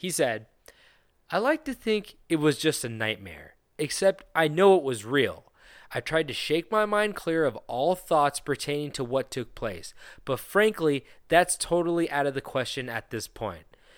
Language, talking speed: English, 185 wpm